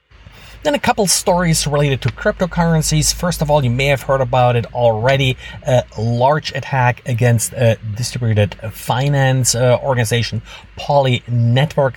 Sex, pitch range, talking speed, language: male, 115-140 Hz, 135 wpm, English